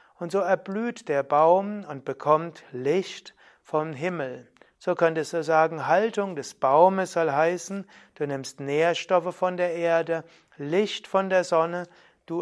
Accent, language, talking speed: German, German, 145 wpm